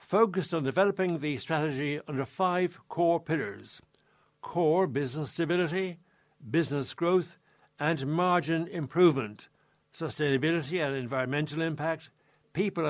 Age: 60-79